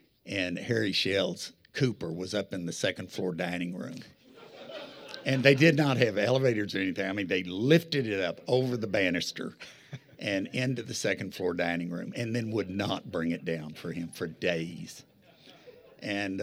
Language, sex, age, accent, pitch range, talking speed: English, male, 60-79, American, 90-130 Hz, 175 wpm